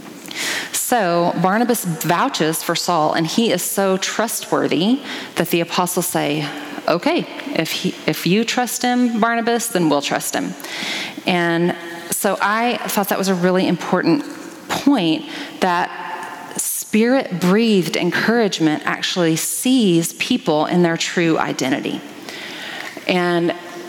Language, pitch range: English, 170-220 Hz